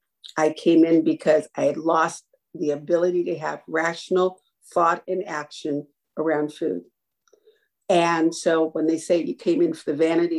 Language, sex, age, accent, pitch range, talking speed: English, female, 50-69, American, 160-230 Hz, 160 wpm